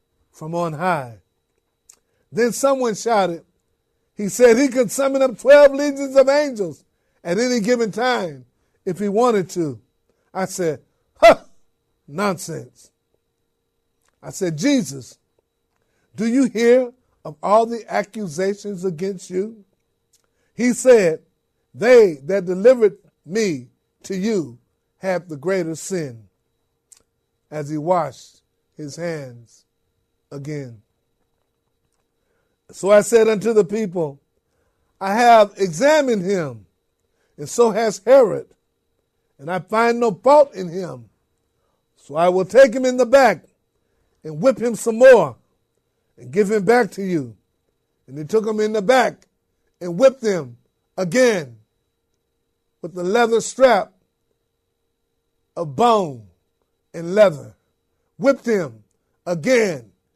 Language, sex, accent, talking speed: English, male, American, 120 wpm